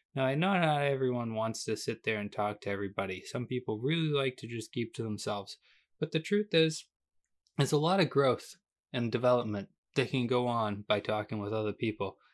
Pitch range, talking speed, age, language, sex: 120-145 Hz, 205 wpm, 20-39, English, male